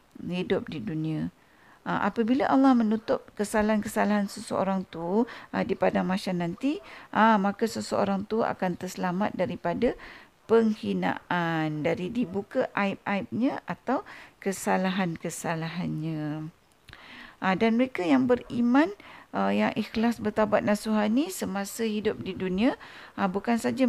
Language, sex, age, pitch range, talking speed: Malay, female, 50-69, 190-235 Hz, 100 wpm